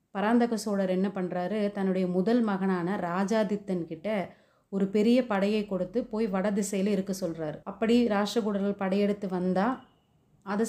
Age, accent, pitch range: 30-49, native, 190-225 Hz